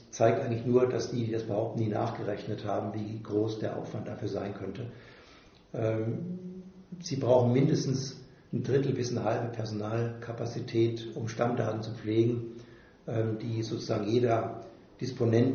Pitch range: 115-130 Hz